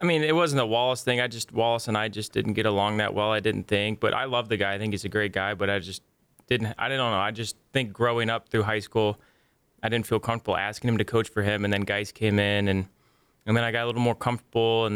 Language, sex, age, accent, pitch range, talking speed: English, male, 20-39, American, 105-120 Hz, 290 wpm